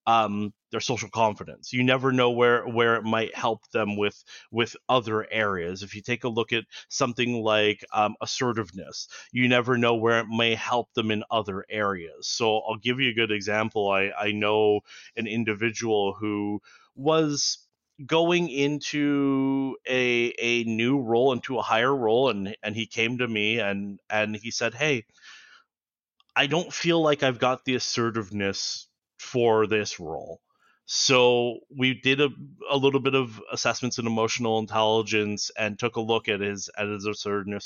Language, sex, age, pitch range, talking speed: English, male, 30-49, 105-130 Hz, 165 wpm